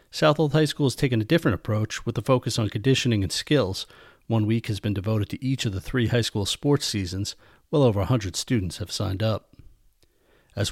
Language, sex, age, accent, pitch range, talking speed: English, male, 40-59, American, 105-130 Hz, 205 wpm